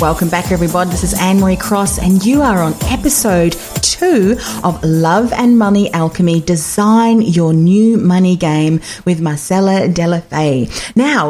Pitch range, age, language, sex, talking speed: 170-235 Hz, 40-59, English, female, 145 wpm